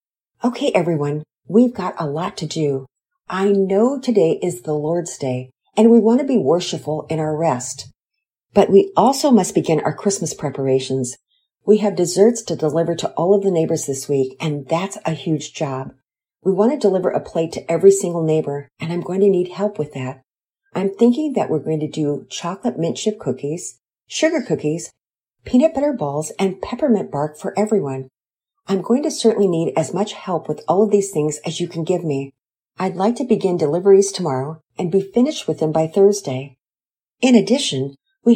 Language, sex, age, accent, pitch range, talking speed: English, female, 50-69, American, 150-210 Hz, 190 wpm